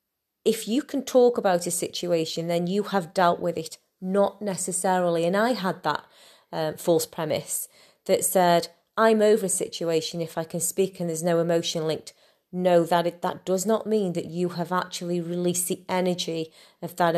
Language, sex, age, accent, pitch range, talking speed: English, female, 30-49, British, 155-185 Hz, 185 wpm